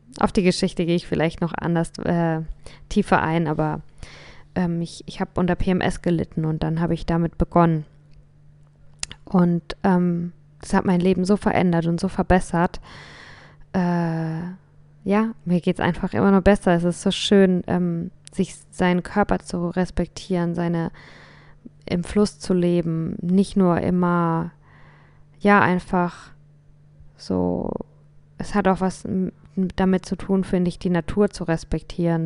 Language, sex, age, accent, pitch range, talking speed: German, female, 20-39, German, 165-185 Hz, 145 wpm